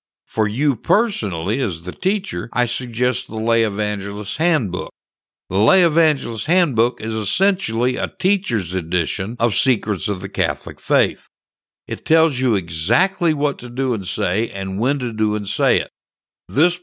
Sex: male